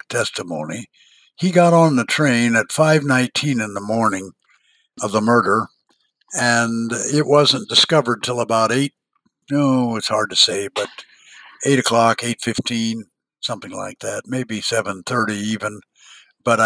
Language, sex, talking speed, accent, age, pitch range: English, male, 150 wpm, American, 60-79, 110-130 Hz